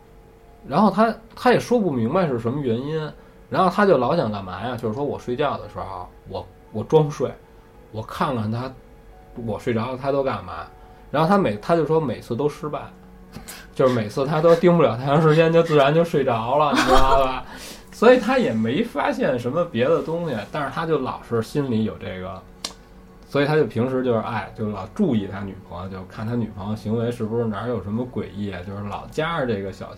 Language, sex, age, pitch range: Chinese, male, 20-39, 95-140 Hz